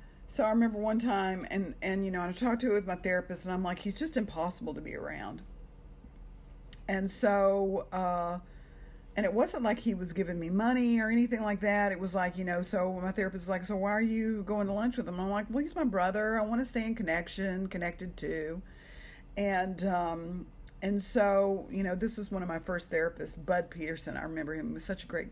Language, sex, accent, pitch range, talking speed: English, female, American, 175-215 Hz, 230 wpm